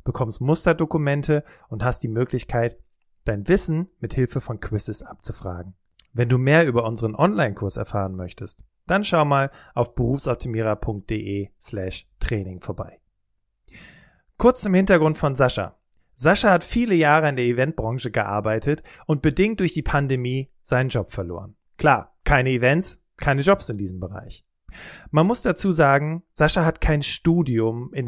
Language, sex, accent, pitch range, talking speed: German, male, German, 115-155 Hz, 140 wpm